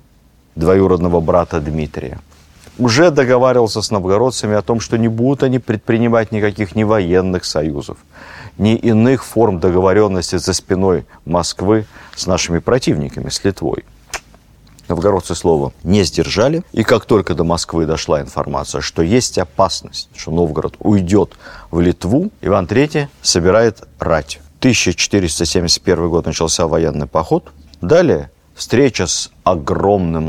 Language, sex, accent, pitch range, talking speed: Russian, male, native, 80-110 Hz, 125 wpm